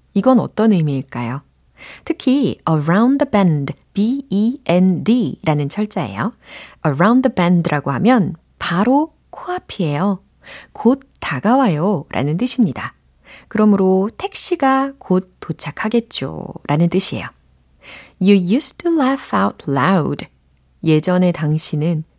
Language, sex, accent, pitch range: Korean, female, native, 150-215 Hz